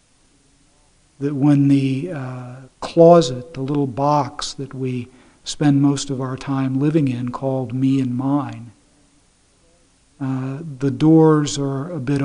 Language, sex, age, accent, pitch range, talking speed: English, male, 50-69, American, 130-155 Hz, 130 wpm